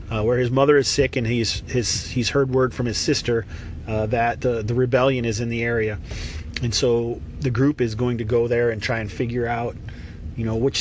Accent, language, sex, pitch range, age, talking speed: American, English, male, 105-130 Hz, 40-59, 230 wpm